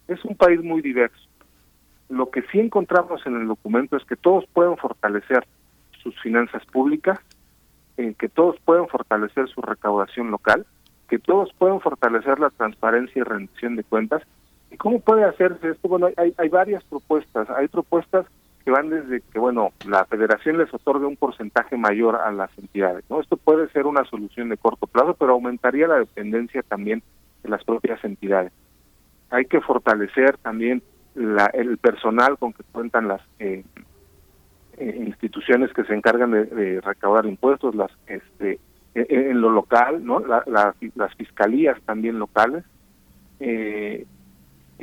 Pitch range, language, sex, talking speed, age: 105-160 Hz, Spanish, male, 155 wpm, 40-59